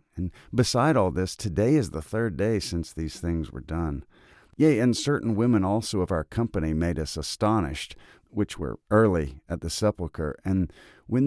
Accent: American